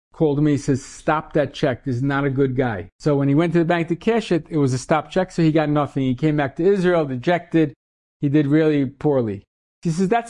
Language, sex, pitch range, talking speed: English, male, 130-165 Hz, 260 wpm